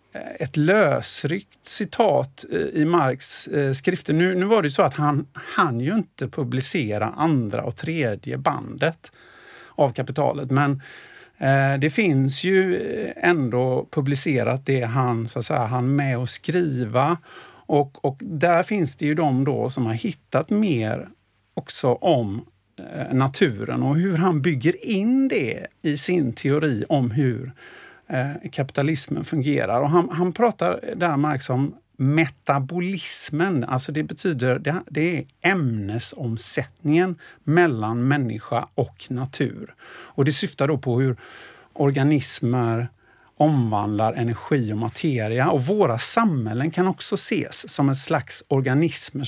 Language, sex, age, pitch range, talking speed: Swedish, male, 50-69, 130-170 Hz, 135 wpm